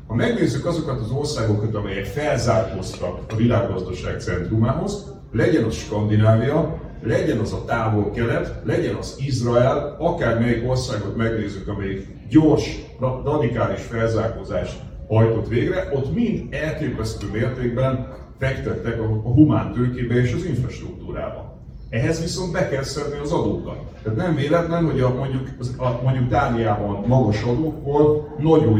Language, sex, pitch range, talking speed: Hungarian, male, 110-150 Hz, 120 wpm